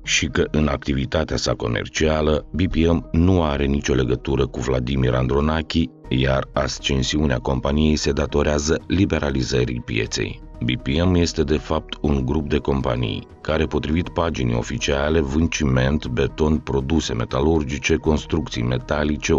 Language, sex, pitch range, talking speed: Romanian, male, 65-80 Hz, 120 wpm